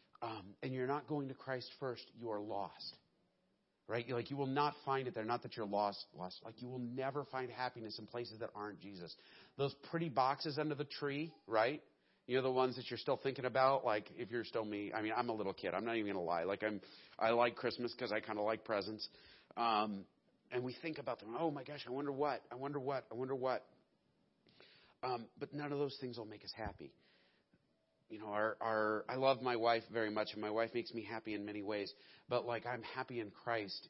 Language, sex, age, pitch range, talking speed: English, male, 40-59, 105-130 Hz, 235 wpm